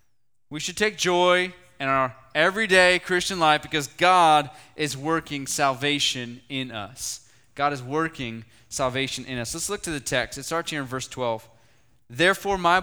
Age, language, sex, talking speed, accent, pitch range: 20-39, English, male, 165 wpm, American, 125-175 Hz